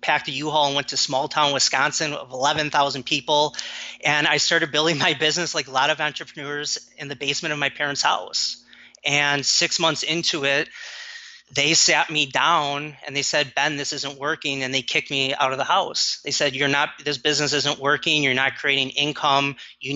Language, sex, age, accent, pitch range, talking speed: English, male, 30-49, American, 135-155 Hz, 205 wpm